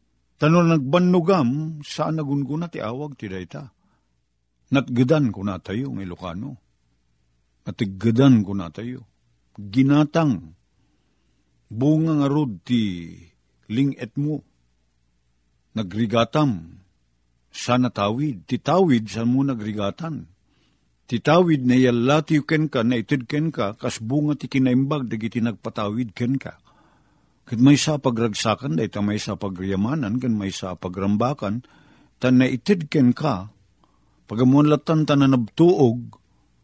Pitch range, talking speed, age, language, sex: 95-140 Hz, 110 wpm, 50-69, Filipino, male